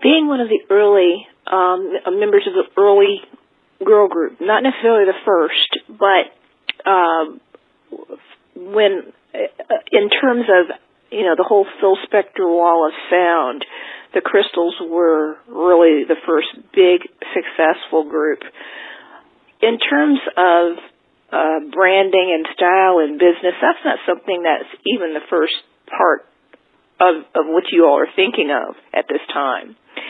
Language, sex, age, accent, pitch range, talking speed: English, female, 40-59, American, 165-245 Hz, 130 wpm